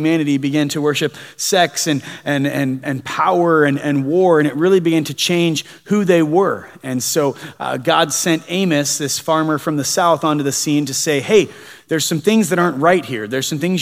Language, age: English, 30-49